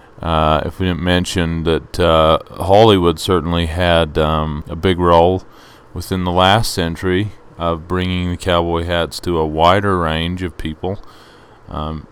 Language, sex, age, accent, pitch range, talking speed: English, male, 30-49, American, 80-90 Hz, 150 wpm